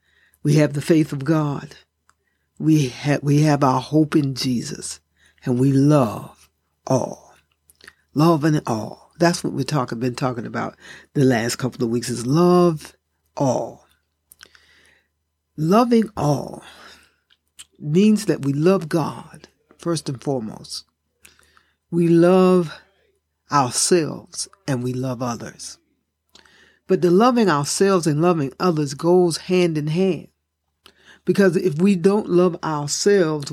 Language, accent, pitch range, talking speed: English, American, 140-180 Hz, 120 wpm